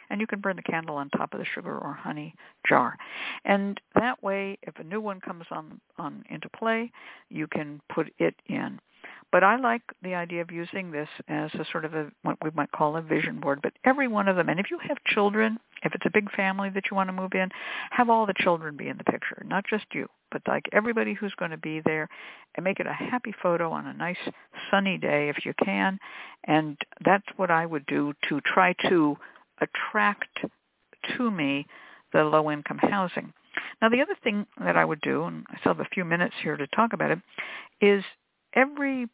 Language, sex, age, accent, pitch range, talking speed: English, female, 60-79, American, 155-210 Hz, 220 wpm